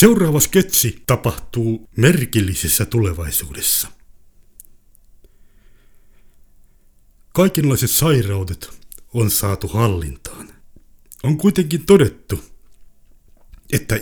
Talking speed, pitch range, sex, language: 60 wpm, 95-130 Hz, male, Finnish